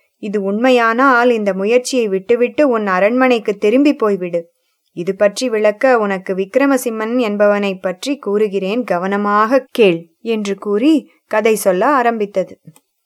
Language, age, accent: English, 20-39, Indian